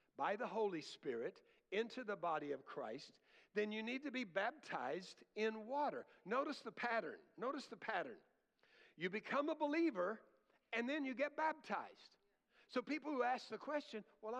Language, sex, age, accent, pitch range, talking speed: English, male, 60-79, American, 200-300 Hz, 165 wpm